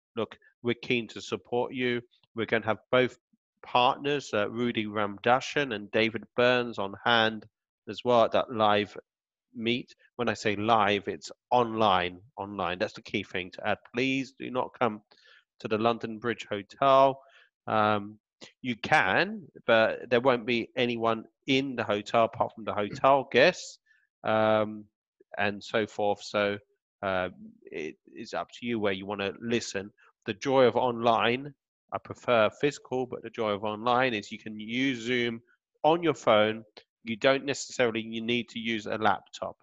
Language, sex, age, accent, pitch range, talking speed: English, male, 30-49, British, 105-125 Hz, 165 wpm